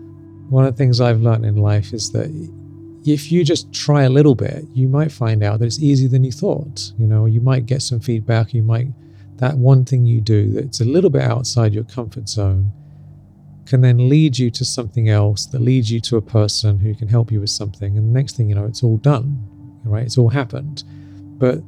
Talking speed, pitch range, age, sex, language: 225 wpm, 110-135 Hz, 40-59, male, English